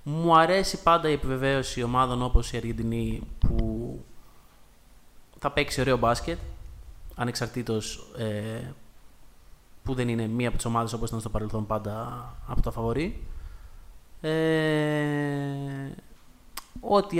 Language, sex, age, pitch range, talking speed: Greek, male, 20-39, 115-150 Hz, 110 wpm